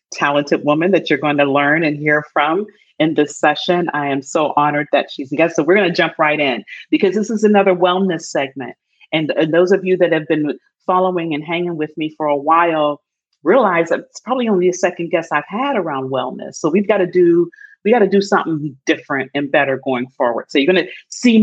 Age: 40-59